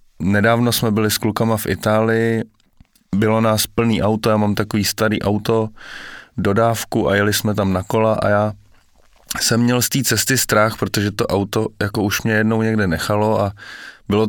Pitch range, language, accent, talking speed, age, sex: 105-120 Hz, Czech, native, 175 wpm, 20-39, male